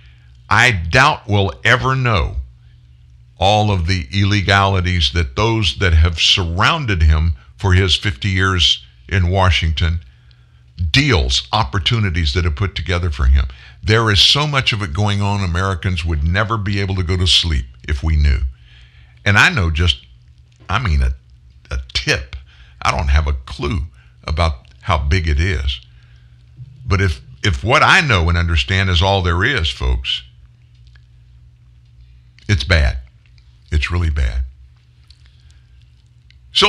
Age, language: 60-79, English